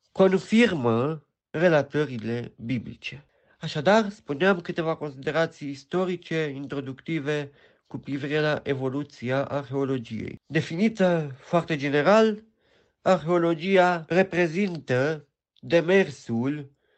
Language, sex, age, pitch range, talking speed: Romanian, male, 50-69, 140-185 Hz, 70 wpm